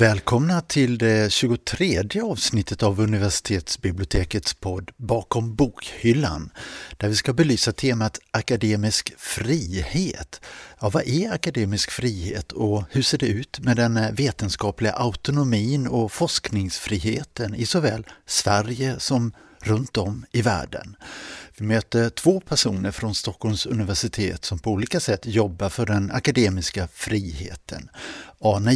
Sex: male